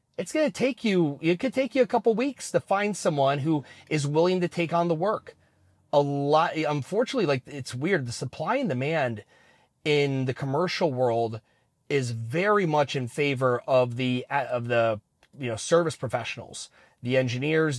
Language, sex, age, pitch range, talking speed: English, male, 30-49, 130-165 Hz, 170 wpm